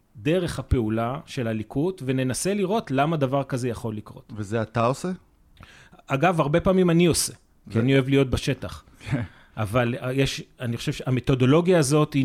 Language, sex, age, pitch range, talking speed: Hebrew, male, 30-49, 120-160 Hz, 155 wpm